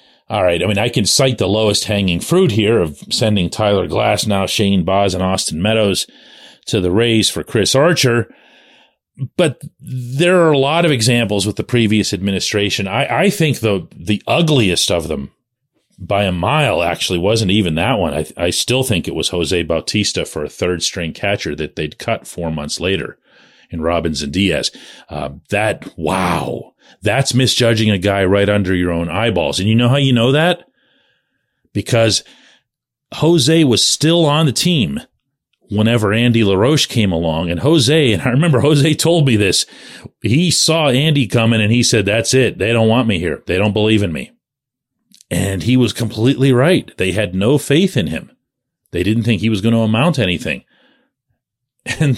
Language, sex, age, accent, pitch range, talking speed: English, male, 40-59, American, 100-140 Hz, 180 wpm